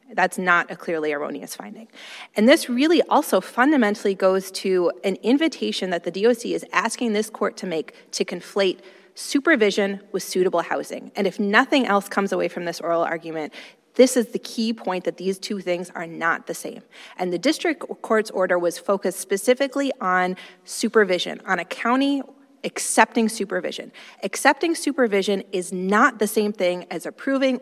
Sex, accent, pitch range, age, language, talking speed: female, American, 185-230 Hz, 30-49, English, 165 wpm